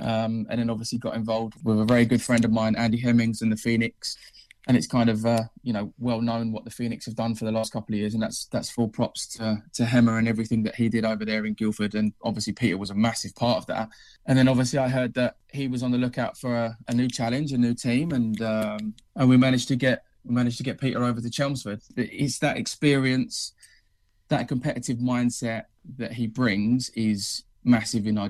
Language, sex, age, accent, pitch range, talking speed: English, male, 20-39, British, 110-125 Hz, 235 wpm